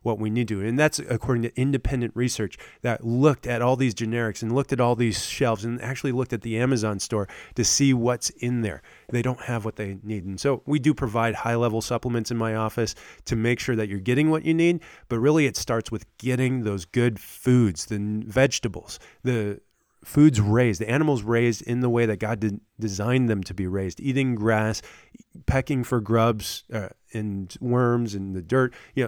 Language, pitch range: English, 110-135 Hz